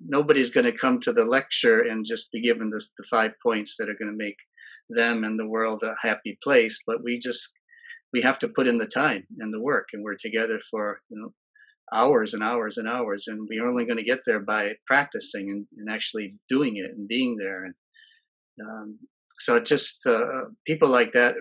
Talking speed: 215 wpm